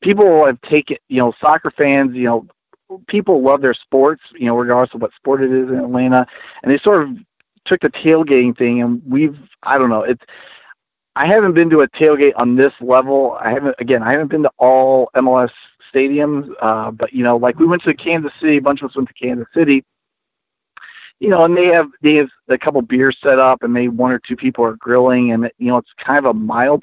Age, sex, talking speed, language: 40-59, male, 230 wpm, English